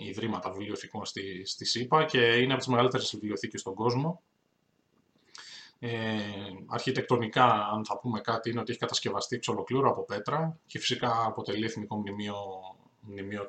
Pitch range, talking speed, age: 100-125 Hz, 140 wpm, 20-39